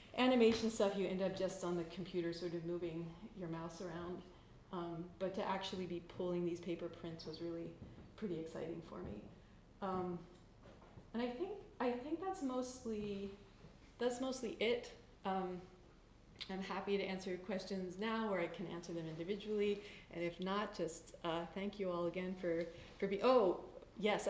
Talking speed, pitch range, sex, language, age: 170 wpm, 185-230 Hz, female, English, 30-49